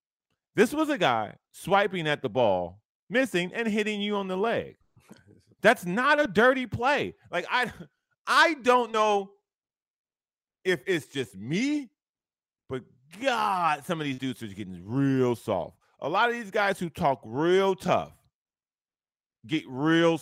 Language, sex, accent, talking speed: English, male, American, 150 wpm